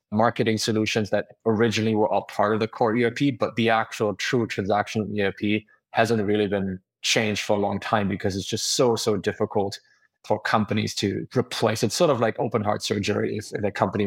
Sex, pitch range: male, 105-120 Hz